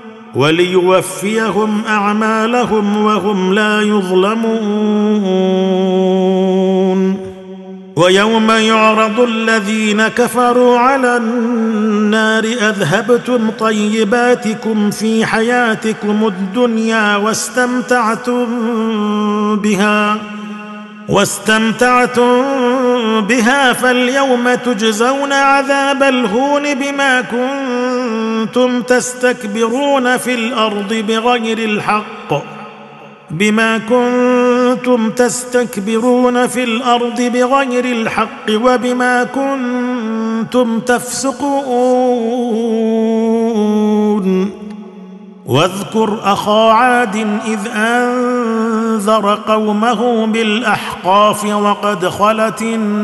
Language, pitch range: Arabic, 210-245 Hz